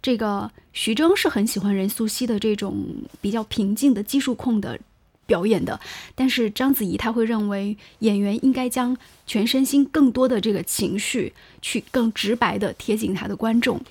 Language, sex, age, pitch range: Chinese, female, 20-39, 205-255 Hz